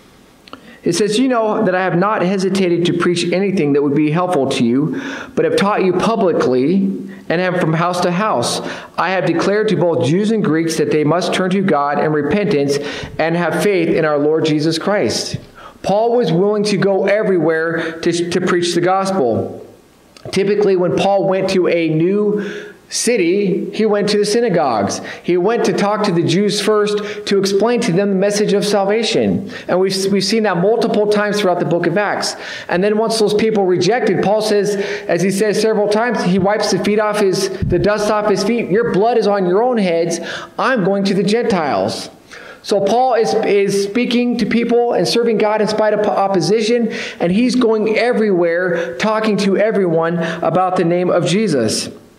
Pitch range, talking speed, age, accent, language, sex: 175-210 Hz, 190 wpm, 40-59, American, English, male